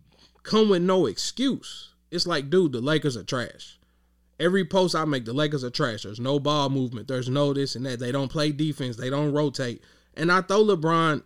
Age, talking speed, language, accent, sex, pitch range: 20-39, 210 wpm, English, American, male, 120-185 Hz